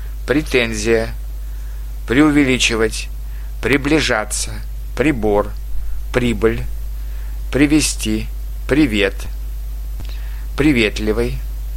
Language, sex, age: Russian, male, 50-69